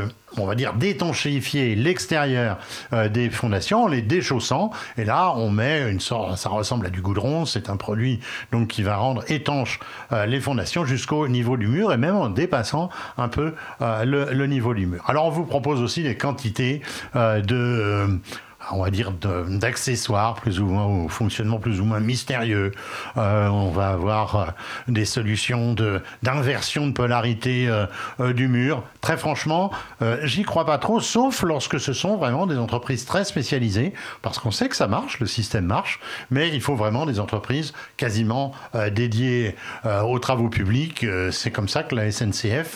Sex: male